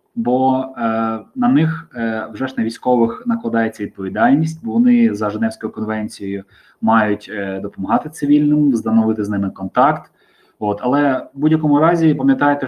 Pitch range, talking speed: 115-150 Hz, 140 wpm